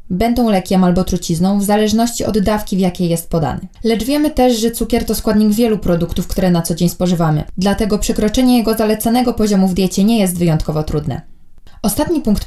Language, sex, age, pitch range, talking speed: Polish, female, 20-39, 180-225 Hz, 190 wpm